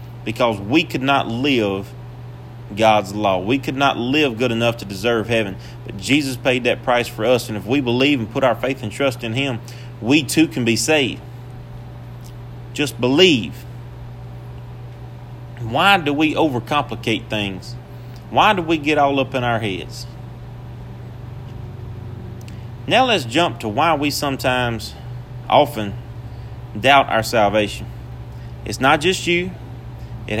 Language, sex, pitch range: English, male, 120-140 Hz